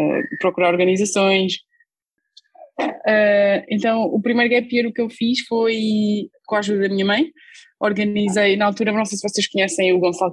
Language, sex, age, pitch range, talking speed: Portuguese, female, 20-39, 170-200 Hz, 170 wpm